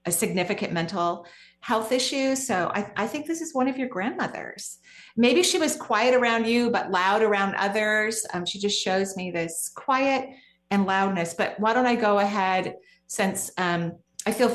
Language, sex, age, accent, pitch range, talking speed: English, female, 40-59, American, 180-230 Hz, 180 wpm